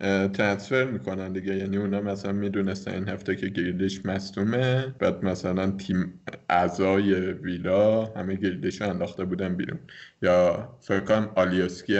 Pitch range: 95-115 Hz